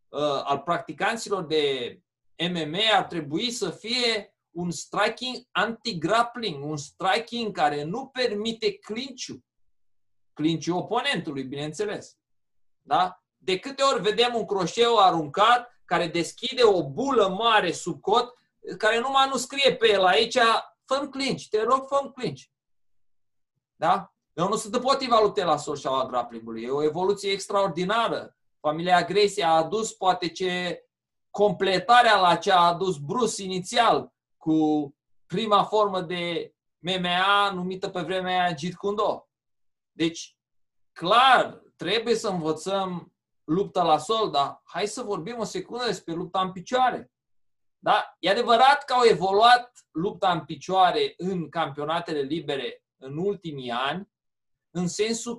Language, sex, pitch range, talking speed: Romanian, male, 160-225 Hz, 130 wpm